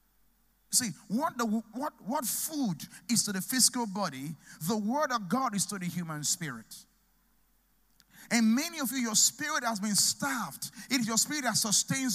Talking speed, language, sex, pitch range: 175 wpm, English, male, 185-230 Hz